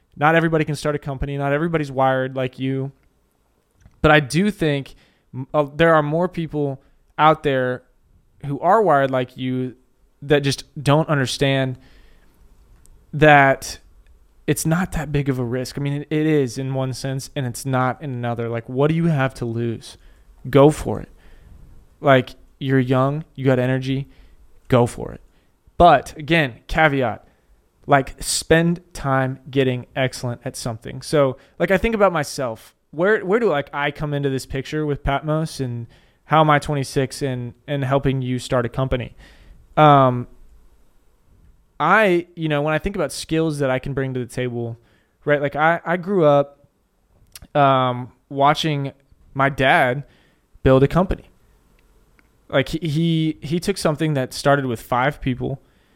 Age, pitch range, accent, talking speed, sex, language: 20-39, 130-150 Hz, American, 160 wpm, male, English